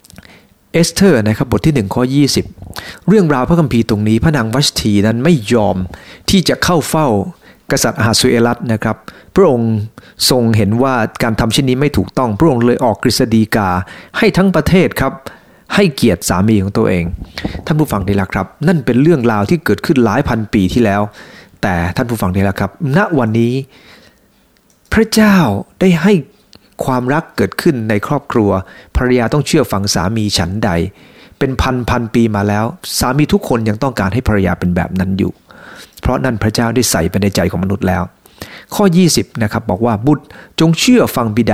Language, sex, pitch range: English, male, 100-145 Hz